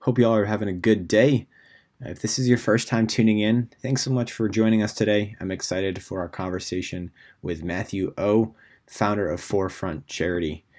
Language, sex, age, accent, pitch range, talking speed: English, male, 20-39, American, 85-110 Hz, 195 wpm